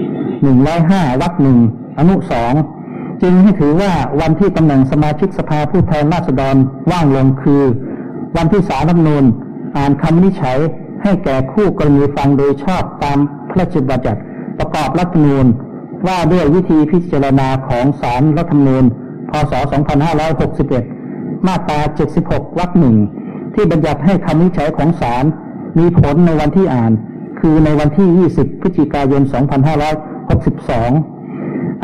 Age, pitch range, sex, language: 60-79, 140-175 Hz, male, Thai